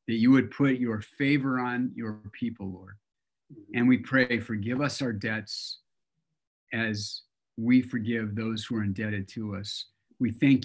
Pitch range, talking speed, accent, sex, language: 110-130 Hz, 160 wpm, American, male, English